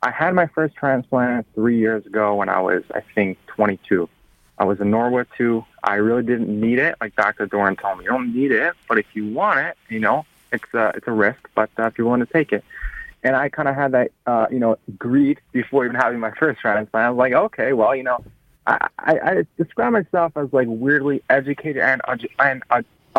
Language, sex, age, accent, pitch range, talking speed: English, male, 30-49, American, 110-135 Hz, 230 wpm